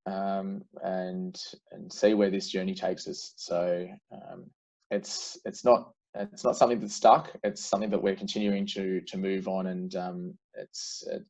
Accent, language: Australian, English